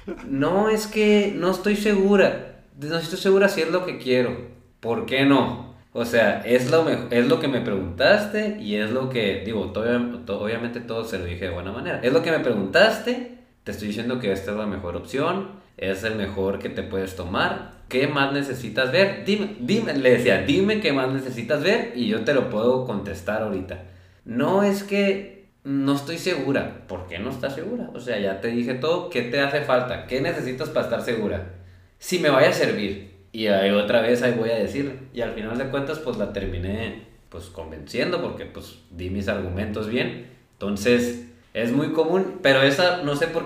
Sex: male